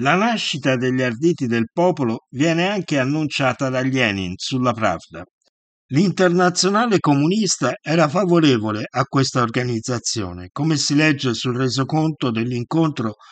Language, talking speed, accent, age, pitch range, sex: Italian, 115 wpm, native, 50-69, 120-160 Hz, male